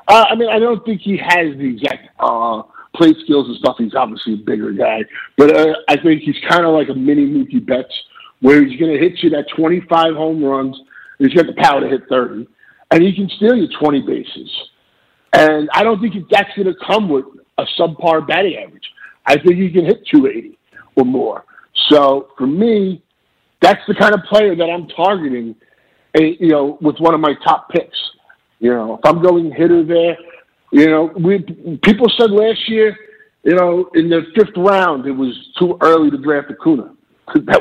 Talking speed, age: 200 wpm, 50-69